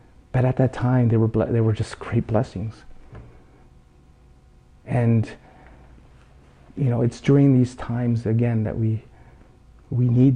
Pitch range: 105-140 Hz